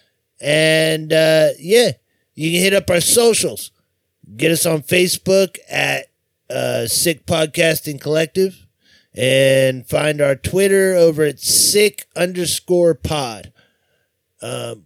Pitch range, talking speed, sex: 140-190 Hz, 115 wpm, male